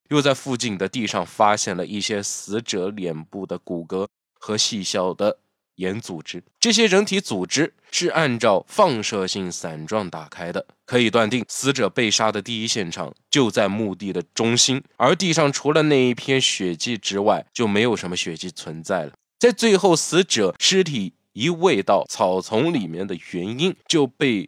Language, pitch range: Chinese, 95-135 Hz